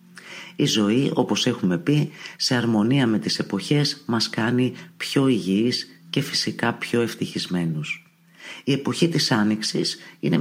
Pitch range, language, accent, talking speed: 100-145 Hz, Greek, native, 135 wpm